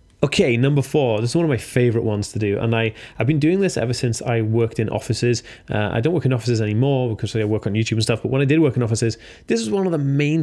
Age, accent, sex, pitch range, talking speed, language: 20-39, British, male, 115-150 Hz, 295 wpm, English